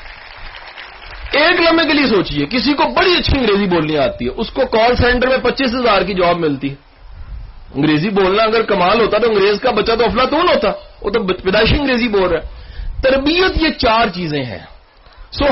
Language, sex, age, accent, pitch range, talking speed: English, male, 40-59, Indian, 145-235 Hz, 180 wpm